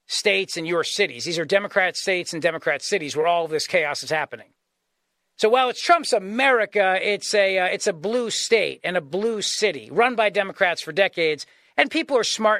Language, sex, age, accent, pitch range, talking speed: English, male, 40-59, American, 170-225 Hz, 205 wpm